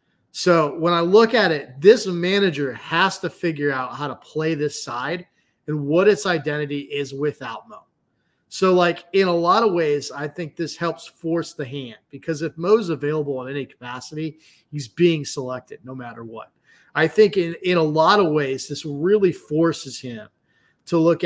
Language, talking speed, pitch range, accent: English, 185 wpm, 140-170 Hz, American